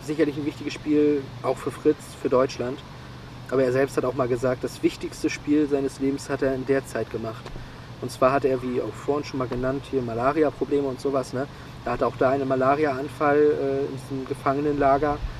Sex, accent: male, German